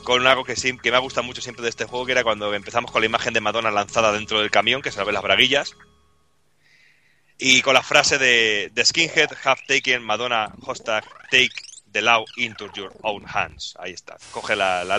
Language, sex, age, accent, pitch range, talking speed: Spanish, male, 30-49, Spanish, 110-135 Hz, 215 wpm